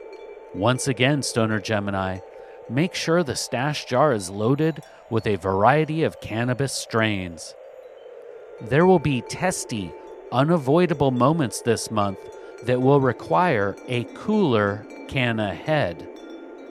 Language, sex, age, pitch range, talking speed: English, male, 40-59, 115-180 Hz, 115 wpm